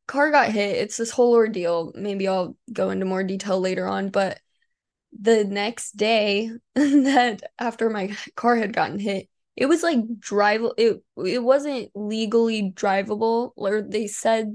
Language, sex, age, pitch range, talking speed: English, female, 10-29, 195-235 Hz, 155 wpm